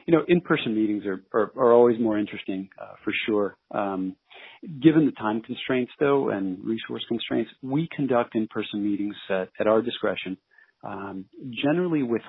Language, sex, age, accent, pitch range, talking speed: English, male, 40-59, American, 105-135 Hz, 160 wpm